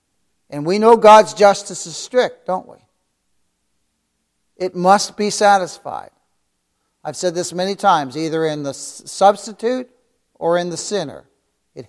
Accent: American